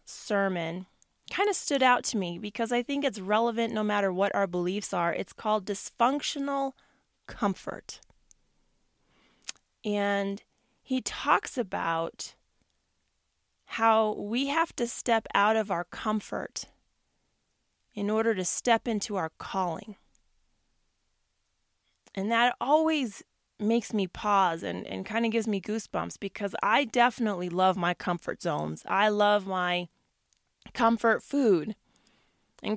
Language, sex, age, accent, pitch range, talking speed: English, female, 20-39, American, 195-240 Hz, 125 wpm